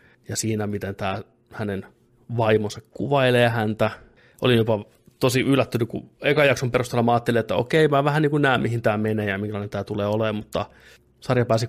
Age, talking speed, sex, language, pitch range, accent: 30-49, 180 wpm, male, Finnish, 110-125 Hz, native